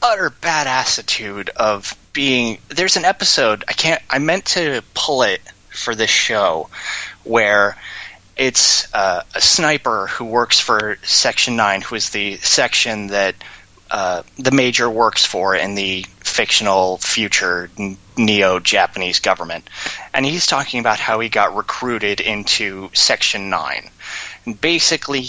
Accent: American